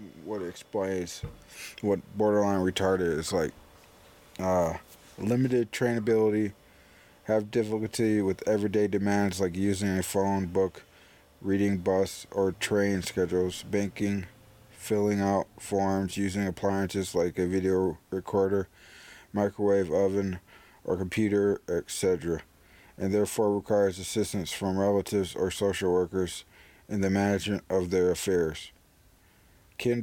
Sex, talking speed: male, 115 wpm